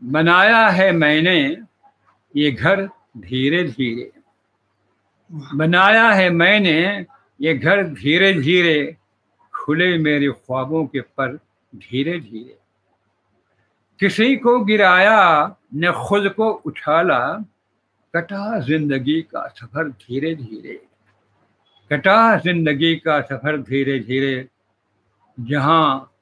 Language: Hindi